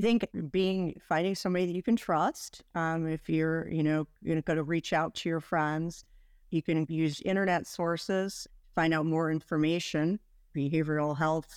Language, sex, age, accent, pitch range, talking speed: English, female, 50-69, American, 150-165 Hz, 175 wpm